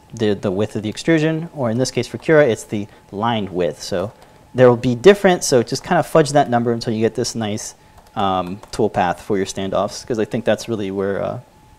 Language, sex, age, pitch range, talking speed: English, male, 30-49, 110-140 Hz, 235 wpm